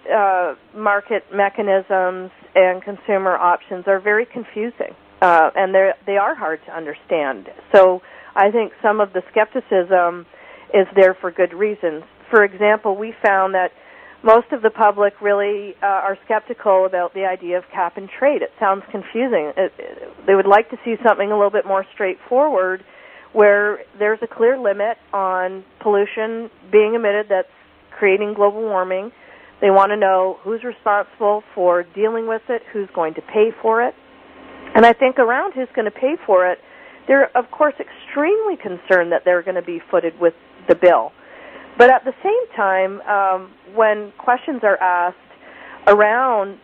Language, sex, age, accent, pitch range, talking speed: English, female, 40-59, American, 185-220 Hz, 160 wpm